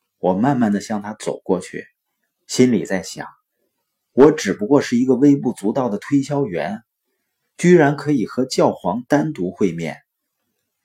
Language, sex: Chinese, male